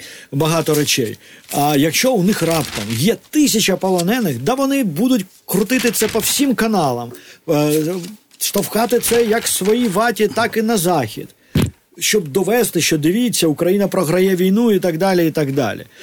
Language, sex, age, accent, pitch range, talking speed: Ukrainian, male, 50-69, native, 150-210 Hz, 150 wpm